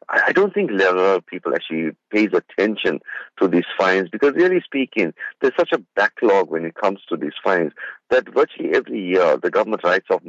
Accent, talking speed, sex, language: Indian, 185 wpm, male, English